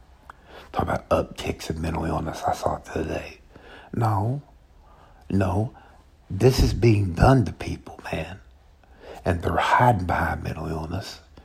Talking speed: 130 wpm